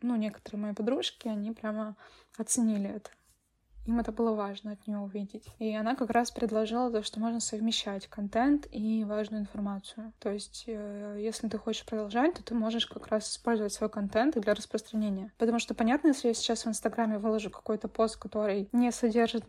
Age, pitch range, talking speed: 10-29, 215-245 Hz, 180 wpm